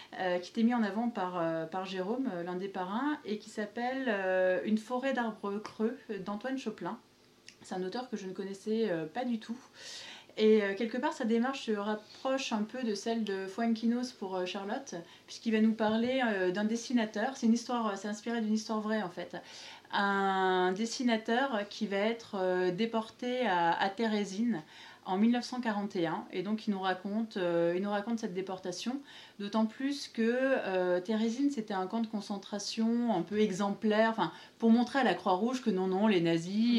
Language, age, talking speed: French, 20-39, 185 wpm